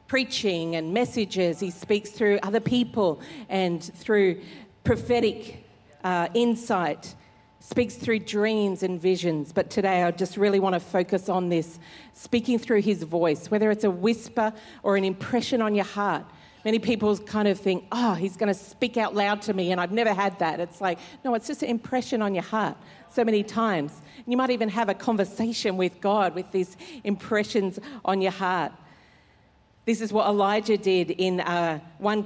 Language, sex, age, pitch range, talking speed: English, female, 50-69, 185-215 Hz, 180 wpm